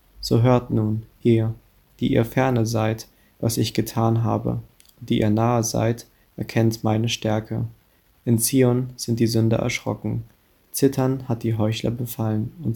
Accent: German